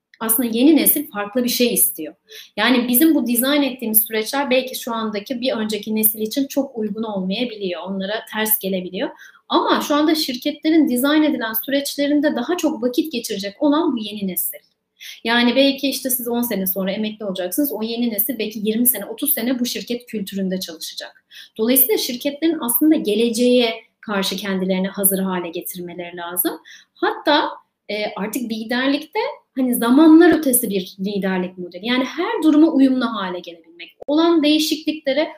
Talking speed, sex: 150 wpm, female